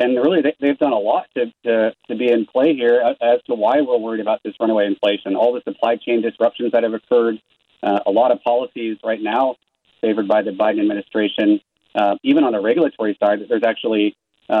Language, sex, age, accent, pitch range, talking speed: English, male, 30-49, American, 110-140 Hz, 205 wpm